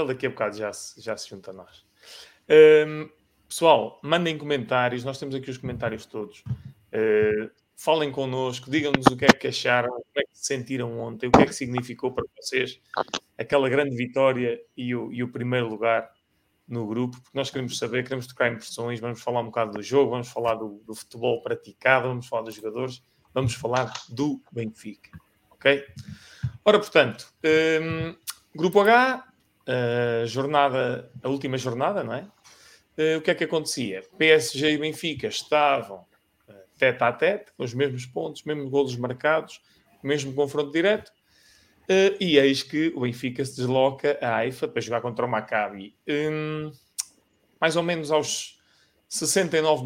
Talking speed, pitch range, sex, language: 165 wpm, 120-155 Hz, male, English